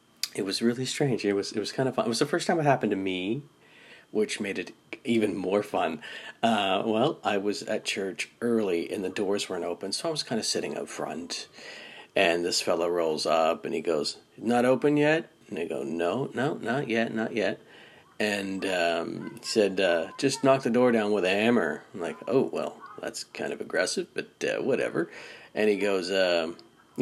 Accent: American